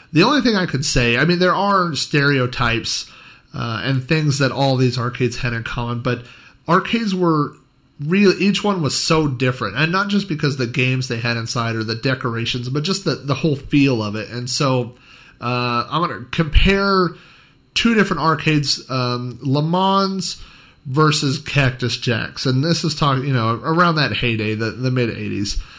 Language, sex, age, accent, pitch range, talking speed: English, male, 30-49, American, 120-150 Hz, 180 wpm